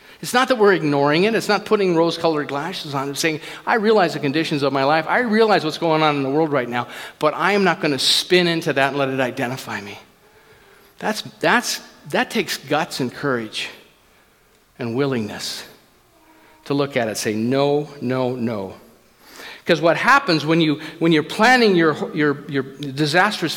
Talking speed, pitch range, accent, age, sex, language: 190 wpm, 140-205 Hz, American, 50-69, male, English